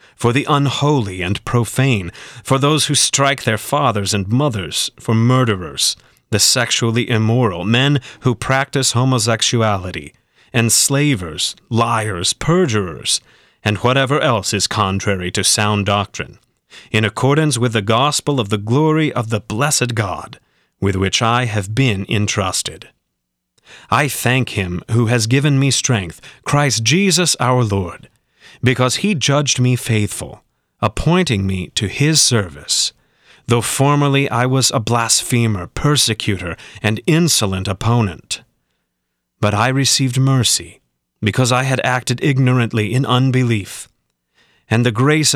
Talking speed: 130 wpm